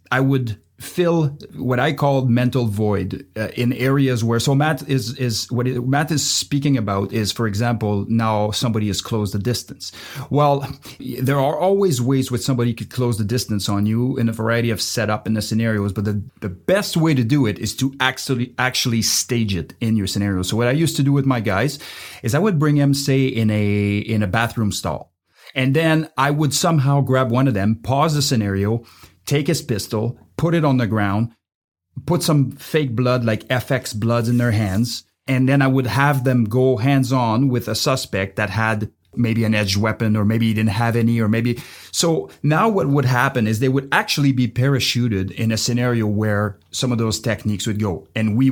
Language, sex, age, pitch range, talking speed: English, male, 30-49, 110-135 Hz, 205 wpm